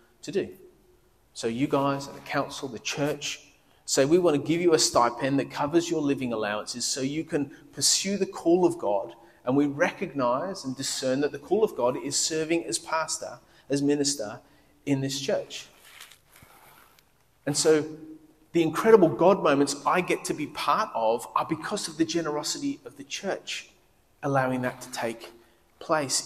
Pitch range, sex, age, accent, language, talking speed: 130-160 Hz, male, 30-49, Australian, English, 170 wpm